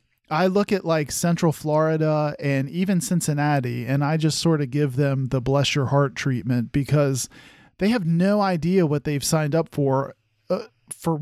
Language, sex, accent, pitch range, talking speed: English, male, American, 140-180 Hz, 175 wpm